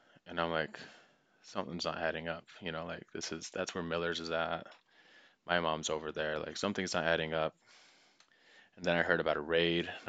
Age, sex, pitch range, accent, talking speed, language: 20-39, male, 80-90 Hz, American, 200 wpm, English